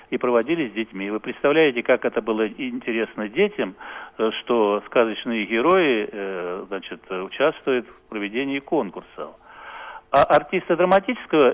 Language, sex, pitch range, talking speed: Russian, male, 115-175 Hz, 110 wpm